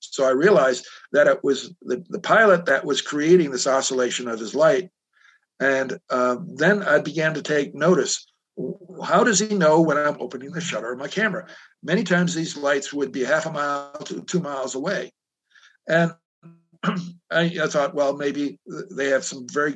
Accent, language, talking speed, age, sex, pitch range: American, English, 180 wpm, 60-79, male, 140-185 Hz